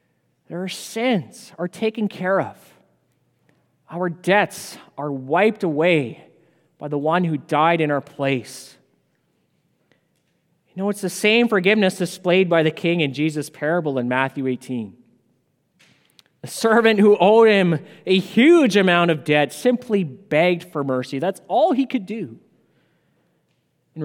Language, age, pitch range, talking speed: English, 30-49, 145-205 Hz, 135 wpm